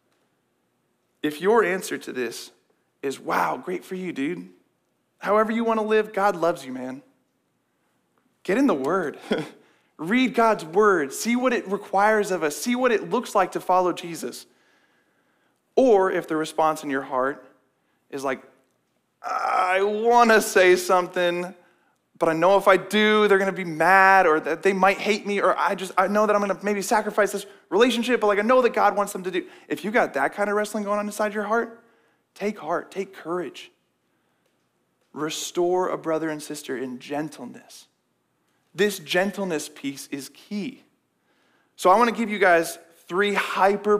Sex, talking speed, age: male, 175 wpm, 20-39